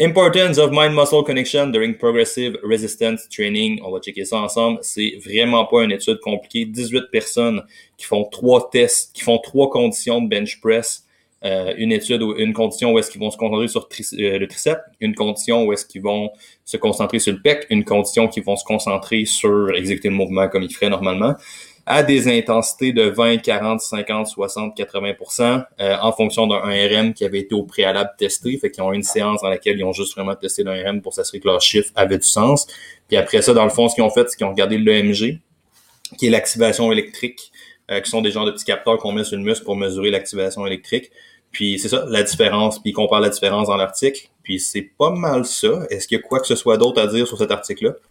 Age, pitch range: 20-39, 100-130 Hz